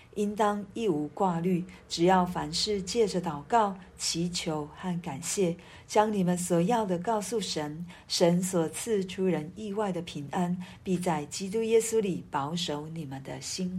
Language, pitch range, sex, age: Chinese, 165-200 Hz, female, 40-59